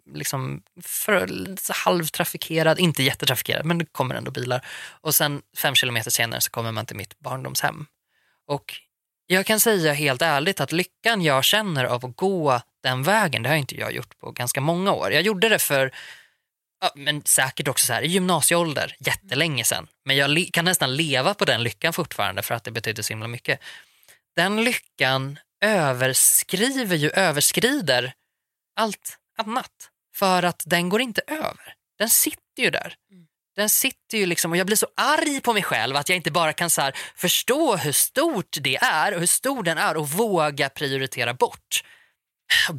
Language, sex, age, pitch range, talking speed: Swedish, male, 20-39, 135-210 Hz, 175 wpm